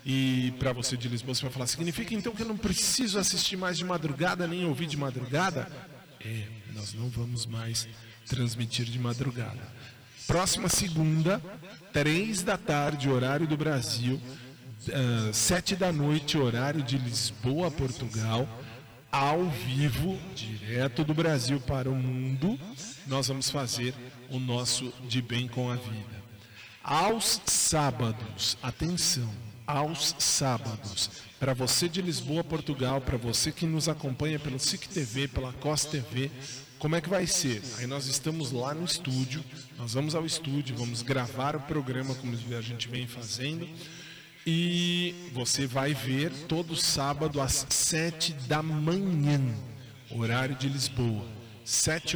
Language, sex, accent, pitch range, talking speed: Portuguese, male, Brazilian, 125-160 Hz, 140 wpm